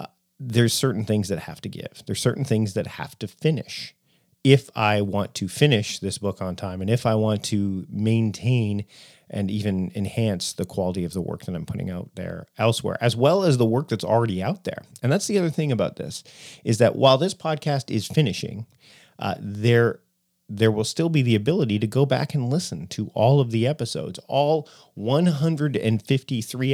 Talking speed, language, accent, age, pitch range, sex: 195 wpm, English, American, 40-59, 100-130 Hz, male